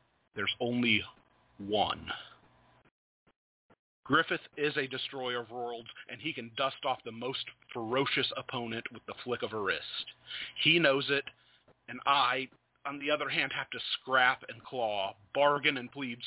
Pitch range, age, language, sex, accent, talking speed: 120-140 Hz, 40-59, English, male, American, 150 wpm